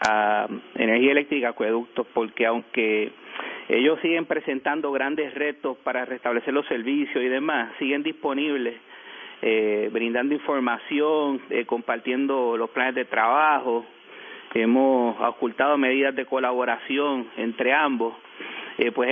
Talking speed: 115 wpm